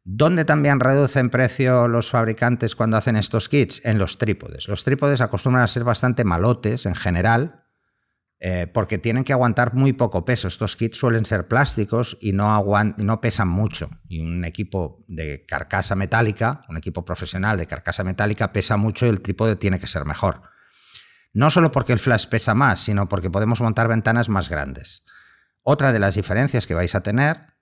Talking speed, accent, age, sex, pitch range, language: 180 wpm, Spanish, 50-69, male, 90-120 Hz, Spanish